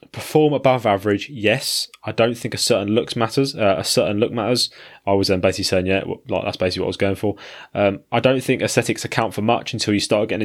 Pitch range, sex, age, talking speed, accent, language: 95-120 Hz, male, 10-29, 255 wpm, British, English